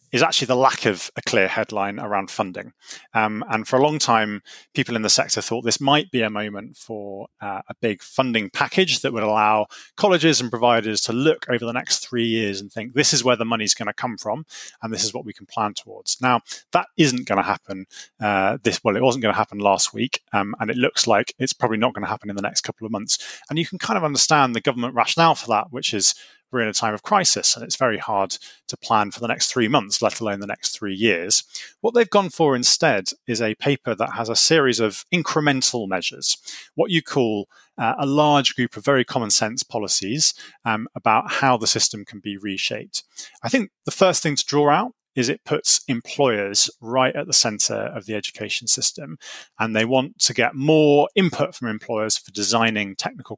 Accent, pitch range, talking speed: British, 110-145 Hz, 225 wpm